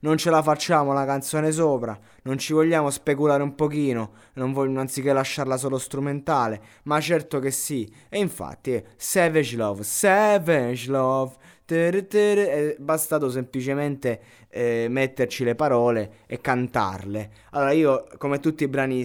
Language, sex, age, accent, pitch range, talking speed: Italian, male, 20-39, native, 110-140 Hz, 150 wpm